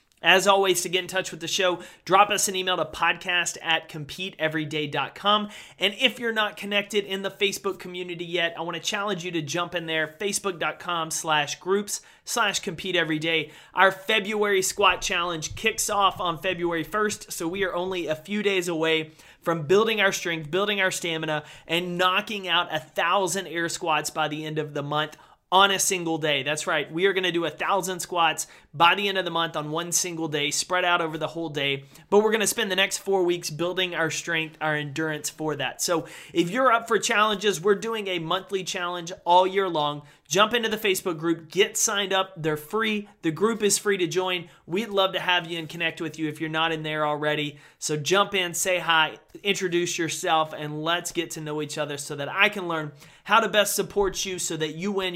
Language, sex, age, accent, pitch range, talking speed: English, male, 30-49, American, 160-195 Hz, 215 wpm